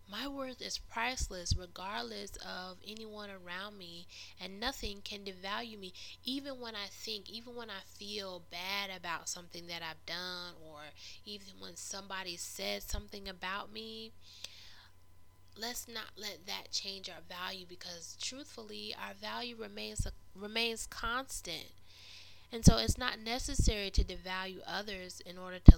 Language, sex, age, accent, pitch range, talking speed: English, female, 10-29, American, 170-210 Hz, 145 wpm